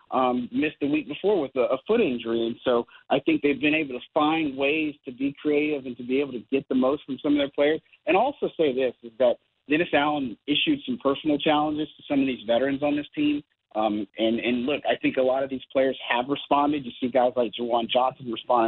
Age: 40-59